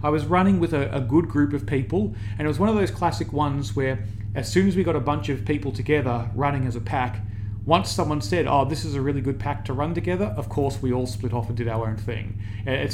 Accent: Australian